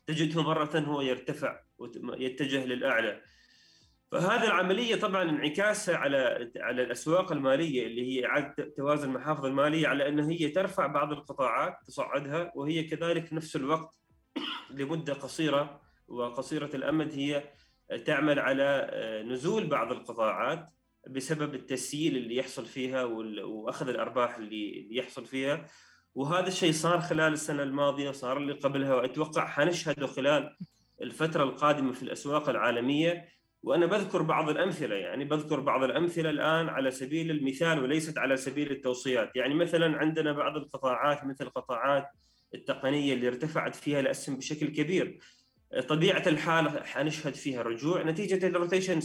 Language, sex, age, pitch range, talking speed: Arabic, male, 30-49, 135-160 Hz, 130 wpm